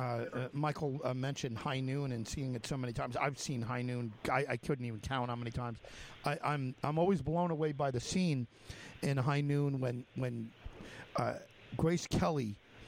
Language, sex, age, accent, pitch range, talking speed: English, male, 50-69, American, 120-140 Hz, 190 wpm